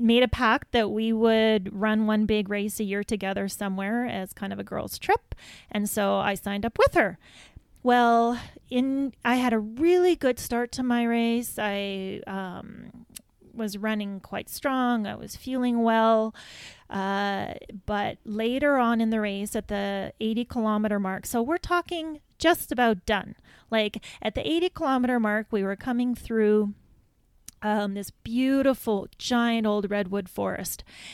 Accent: American